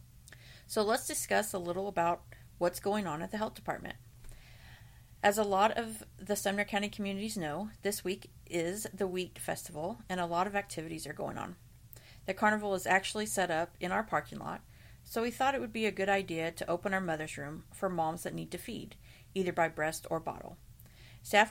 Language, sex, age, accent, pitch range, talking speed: English, female, 40-59, American, 155-200 Hz, 200 wpm